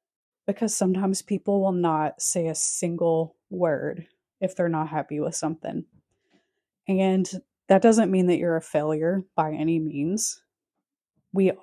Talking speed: 140 wpm